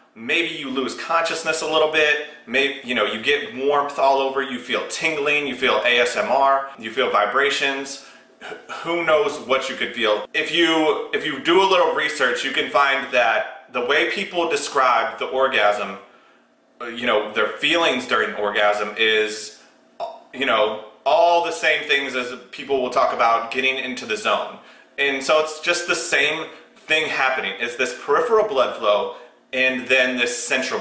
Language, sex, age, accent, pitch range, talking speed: English, male, 30-49, American, 125-160 Hz, 170 wpm